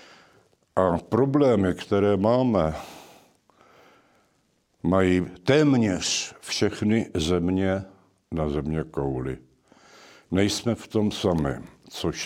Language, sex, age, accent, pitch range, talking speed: Czech, male, 70-89, native, 85-105 Hz, 80 wpm